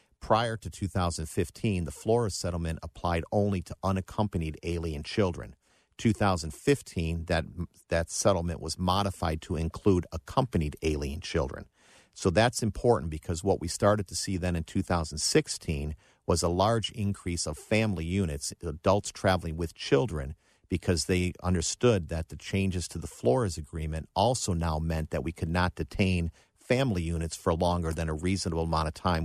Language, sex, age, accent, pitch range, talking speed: English, male, 50-69, American, 80-95 Hz, 150 wpm